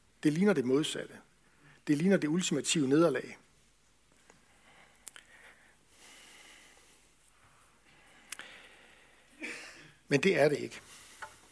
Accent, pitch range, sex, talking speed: native, 140-185 Hz, male, 75 wpm